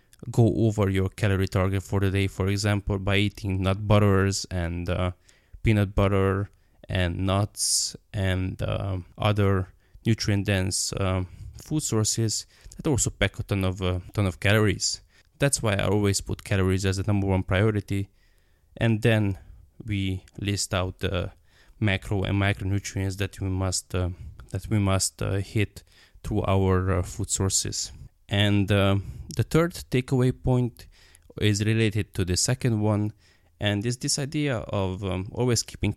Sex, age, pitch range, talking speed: male, 20-39, 95-105 Hz, 155 wpm